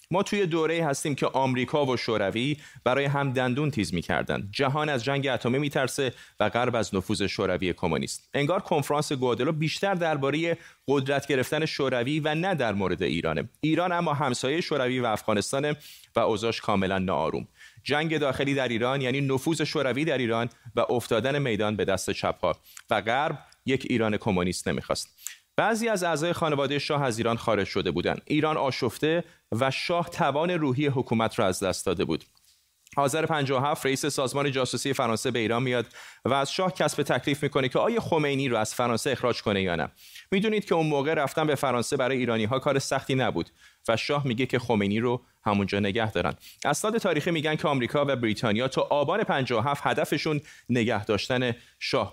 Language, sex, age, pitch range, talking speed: Persian, male, 30-49, 115-150 Hz, 175 wpm